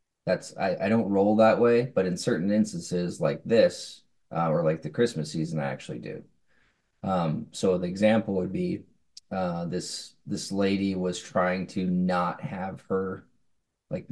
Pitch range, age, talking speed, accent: 95-115 Hz, 20-39, 165 wpm, American